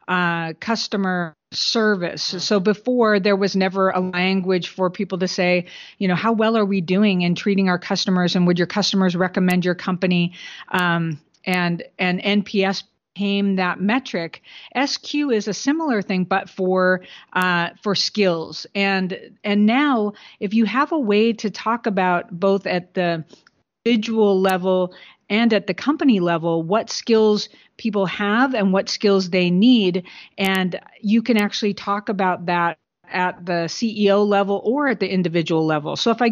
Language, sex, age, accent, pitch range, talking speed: English, female, 50-69, American, 180-215 Hz, 160 wpm